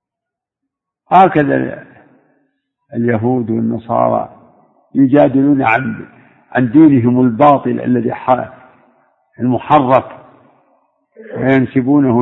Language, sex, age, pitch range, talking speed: Arabic, male, 60-79, 130-165 Hz, 50 wpm